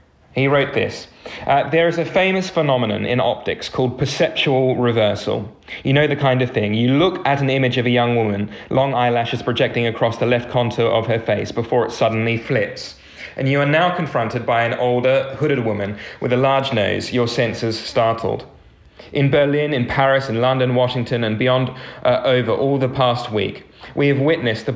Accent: British